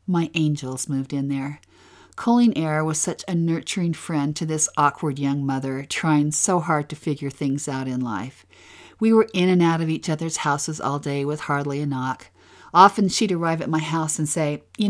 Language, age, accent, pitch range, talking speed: English, 50-69, American, 140-180 Hz, 200 wpm